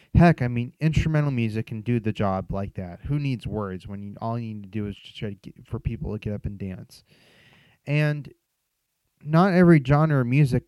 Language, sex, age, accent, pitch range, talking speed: English, male, 30-49, American, 105-135 Hz, 220 wpm